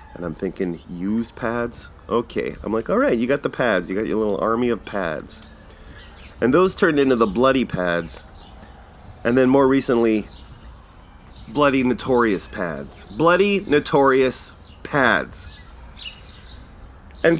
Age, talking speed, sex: 30-49, 135 wpm, male